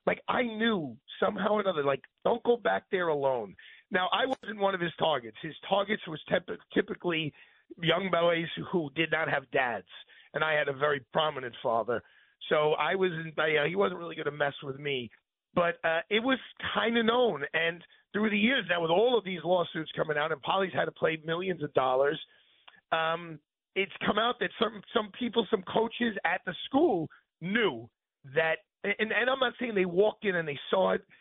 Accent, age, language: American, 40-59, English